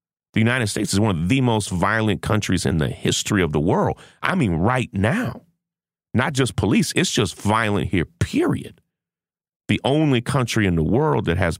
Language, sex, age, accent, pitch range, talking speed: English, male, 40-59, American, 85-110 Hz, 185 wpm